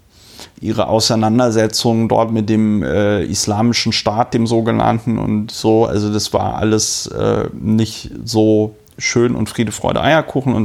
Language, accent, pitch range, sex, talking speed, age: German, German, 105-120 Hz, male, 140 wpm, 30-49